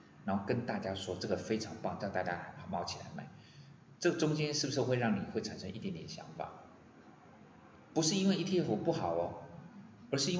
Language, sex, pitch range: Chinese, male, 100-165 Hz